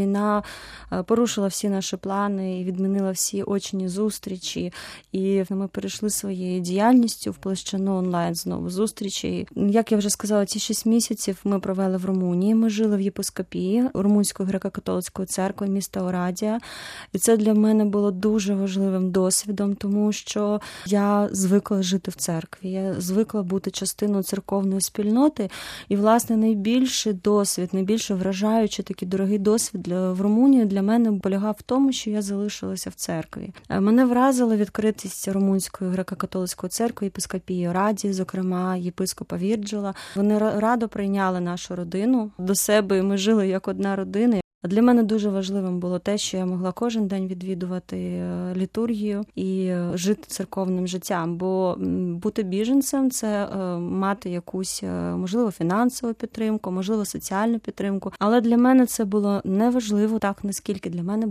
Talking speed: 145 wpm